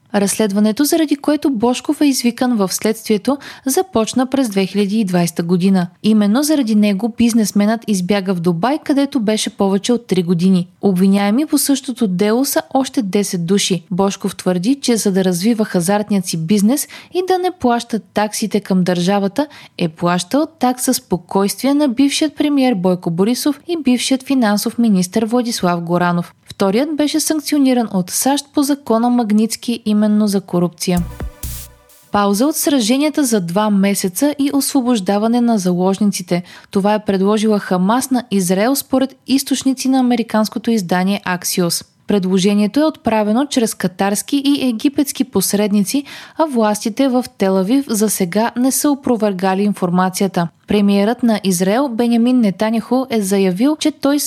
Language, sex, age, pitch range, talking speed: Bulgarian, female, 20-39, 195-265 Hz, 135 wpm